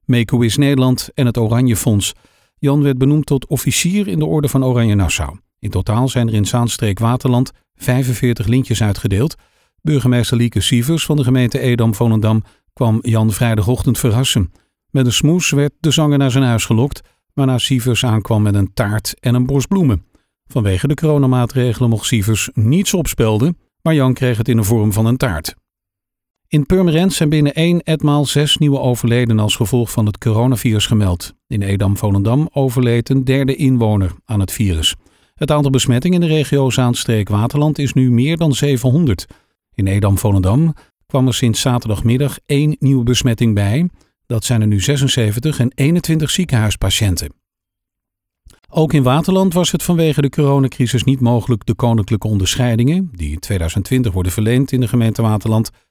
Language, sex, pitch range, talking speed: Dutch, male, 110-140 Hz, 160 wpm